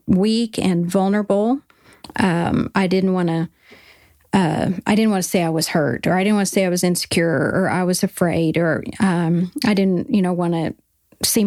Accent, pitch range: American, 175-200 Hz